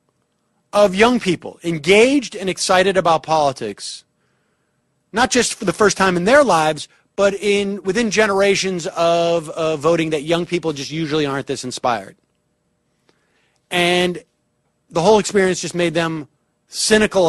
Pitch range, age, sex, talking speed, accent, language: 140-185 Hz, 30-49, male, 140 wpm, American, English